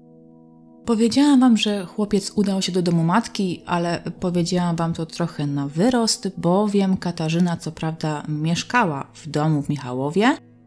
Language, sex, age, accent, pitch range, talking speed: Polish, female, 30-49, native, 150-200 Hz, 140 wpm